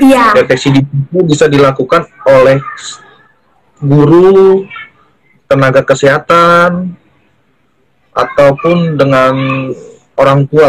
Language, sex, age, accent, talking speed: Indonesian, male, 20-39, native, 65 wpm